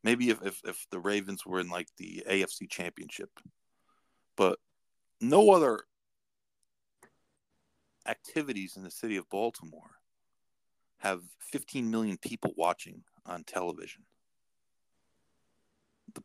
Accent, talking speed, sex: American, 105 wpm, male